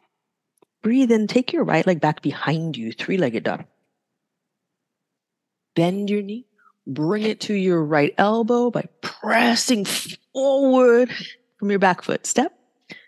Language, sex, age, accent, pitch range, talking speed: English, female, 30-49, American, 160-240 Hz, 130 wpm